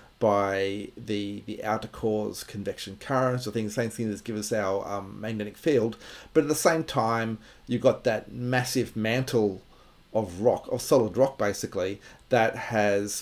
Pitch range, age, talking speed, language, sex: 105-125 Hz, 40-59, 165 wpm, English, male